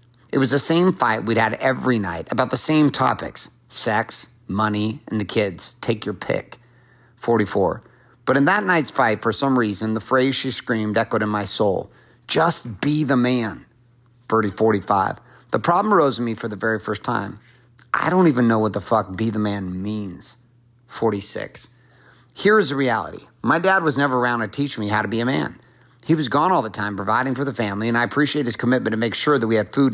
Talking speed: 210 wpm